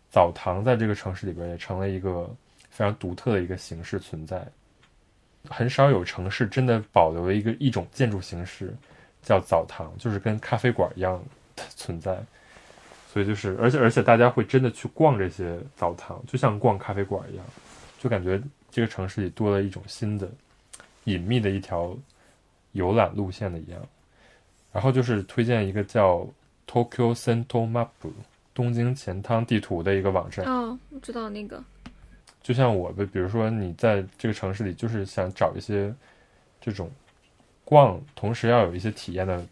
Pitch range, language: 95-120 Hz, Chinese